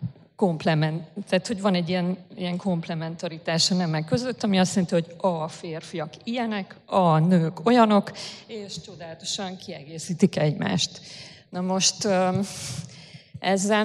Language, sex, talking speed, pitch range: Hungarian, female, 115 wpm, 170-205 Hz